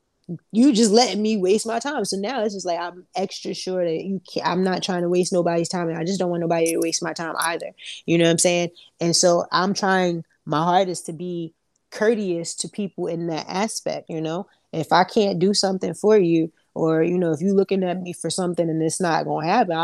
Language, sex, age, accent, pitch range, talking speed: English, female, 20-39, American, 170-220 Hz, 240 wpm